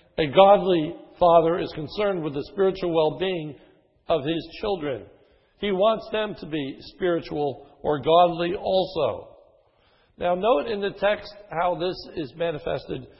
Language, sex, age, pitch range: English, male, 60-79, 155-200 Hz